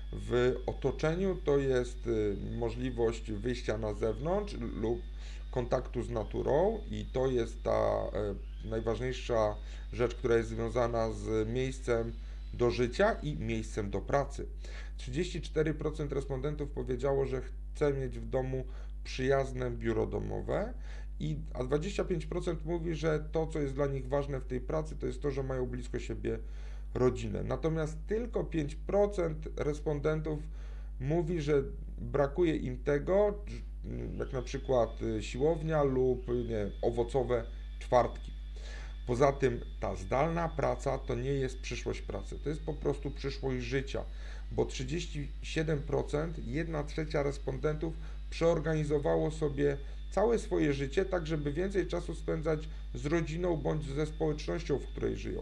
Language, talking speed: Polish, 125 wpm